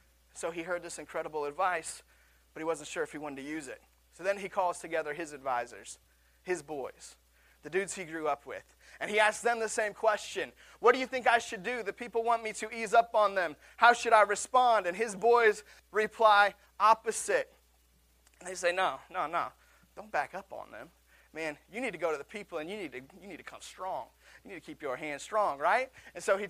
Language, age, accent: English, 30-49, American